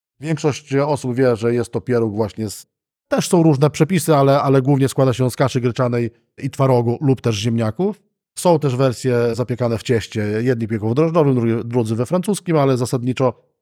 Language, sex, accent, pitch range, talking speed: Polish, male, native, 115-135 Hz, 185 wpm